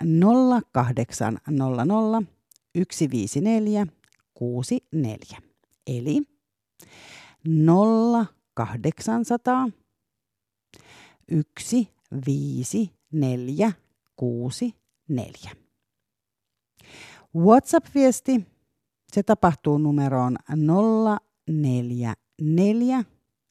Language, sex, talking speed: Finnish, female, 30 wpm